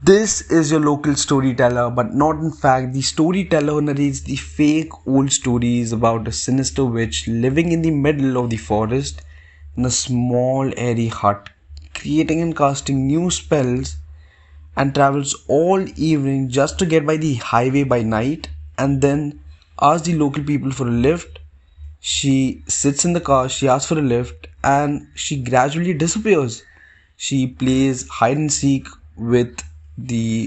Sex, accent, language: male, Indian, English